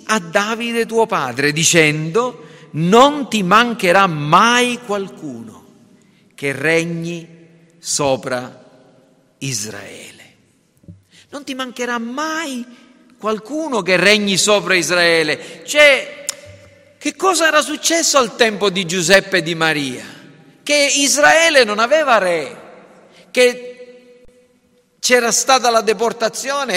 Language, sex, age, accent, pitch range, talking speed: Italian, male, 50-69, native, 175-245 Hz, 100 wpm